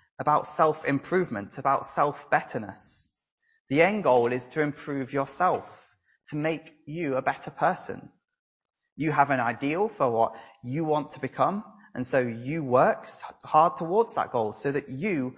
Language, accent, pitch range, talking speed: English, British, 125-180 Hz, 150 wpm